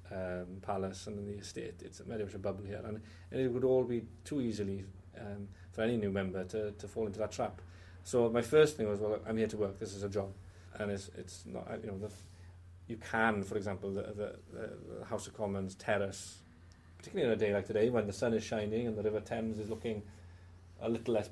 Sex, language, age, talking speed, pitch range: male, English, 30-49, 230 wpm, 95-110 Hz